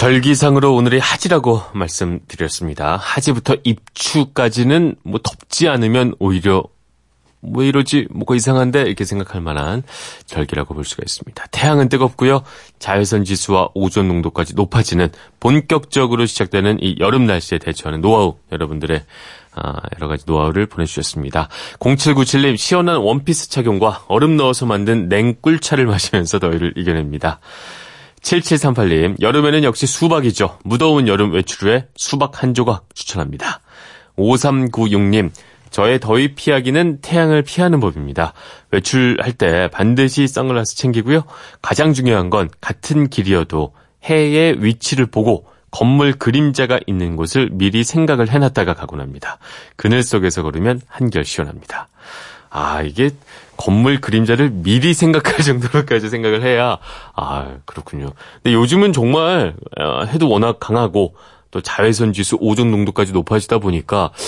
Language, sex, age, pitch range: Korean, male, 30-49, 95-135 Hz